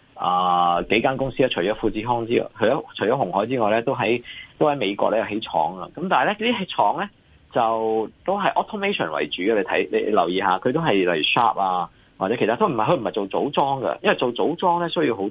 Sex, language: male, Chinese